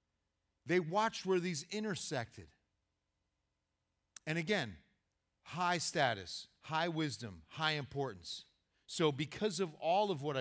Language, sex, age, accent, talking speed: English, male, 40-59, American, 110 wpm